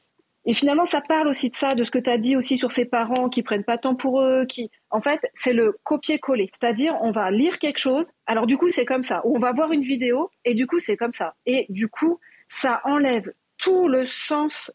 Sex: female